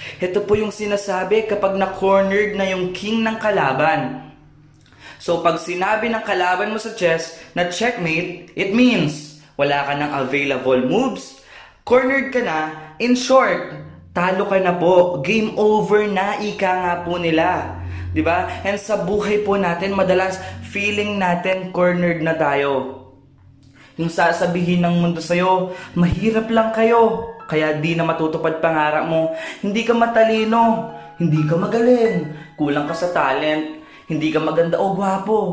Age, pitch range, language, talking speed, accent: 20-39, 155-205 Hz, Filipino, 145 wpm, native